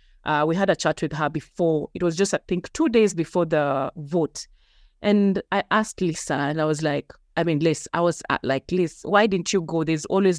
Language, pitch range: English, 155-190 Hz